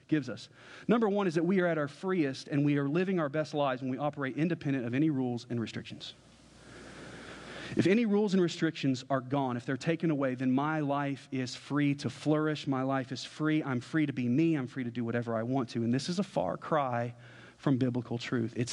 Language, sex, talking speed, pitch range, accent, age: English, male, 230 wpm, 125-155 Hz, American, 40-59